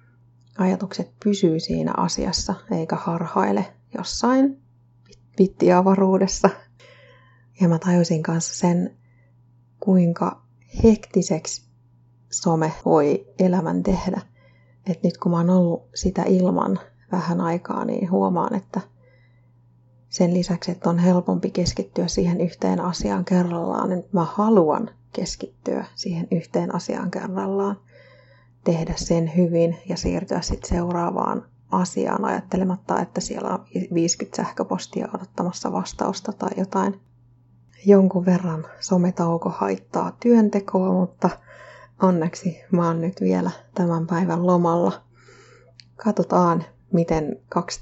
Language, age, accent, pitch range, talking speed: Finnish, 30-49, native, 125-190 Hz, 105 wpm